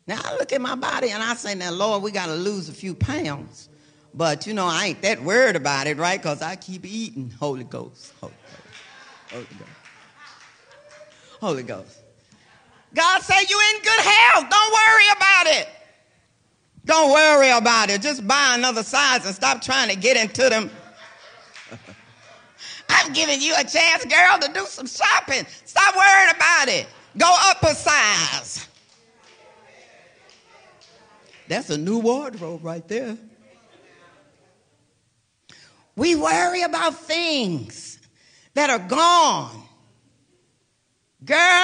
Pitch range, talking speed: 215-335 Hz, 135 wpm